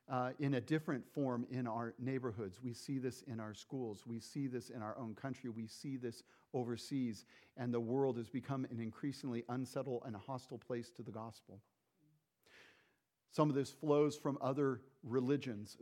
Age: 50-69